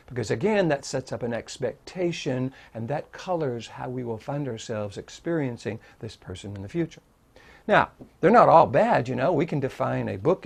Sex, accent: male, American